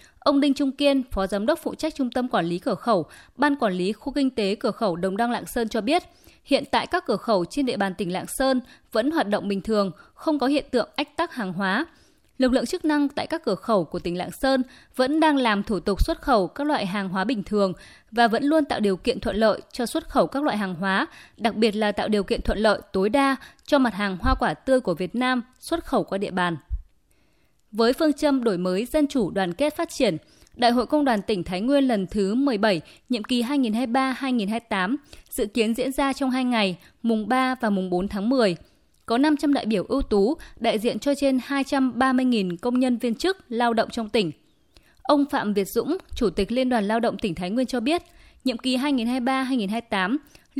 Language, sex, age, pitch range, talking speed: Vietnamese, female, 20-39, 205-275 Hz, 230 wpm